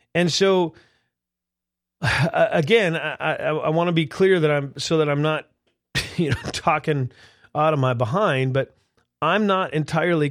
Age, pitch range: 40-59, 135-170 Hz